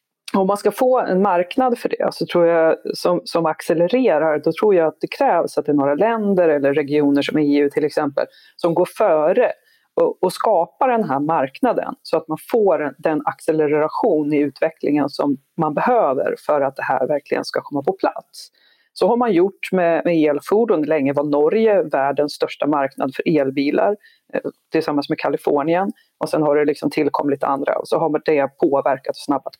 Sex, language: female, Swedish